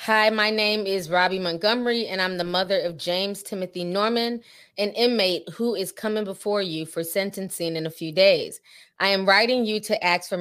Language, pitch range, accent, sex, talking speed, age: English, 175-210 Hz, American, female, 195 wpm, 20-39